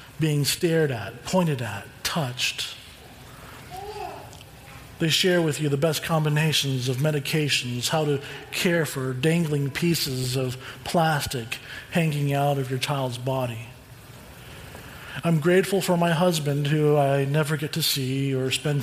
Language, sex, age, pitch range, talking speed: English, male, 40-59, 135-160 Hz, 135 wpm